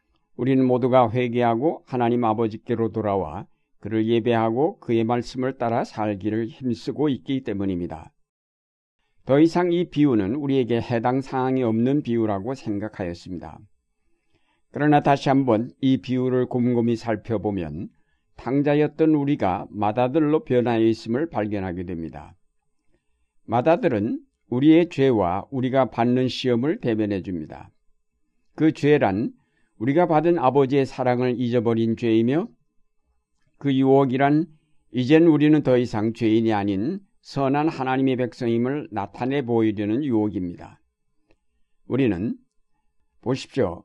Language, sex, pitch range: Korean, male, 110-135 Hz